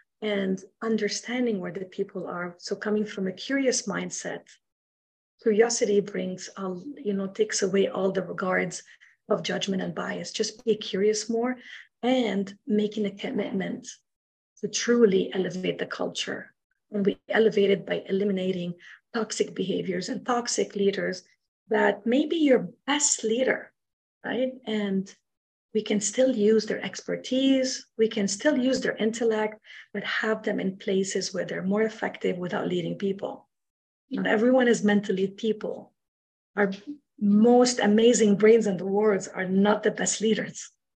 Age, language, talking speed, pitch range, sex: 40-59, English, 145 wpm, 195-235 Hz, female